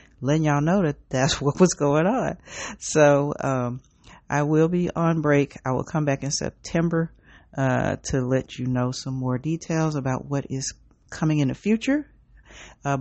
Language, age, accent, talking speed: English, 40-59, American, 175 wpm